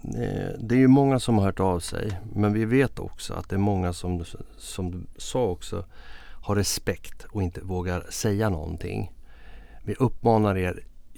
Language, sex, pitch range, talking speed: Swedish, male, 95-115 Hz, 170 wpm